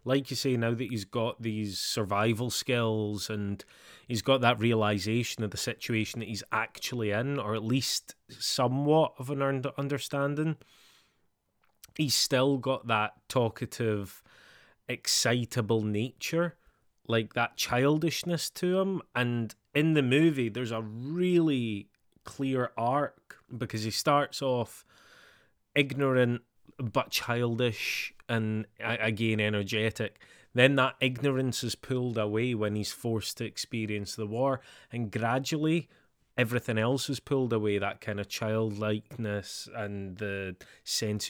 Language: English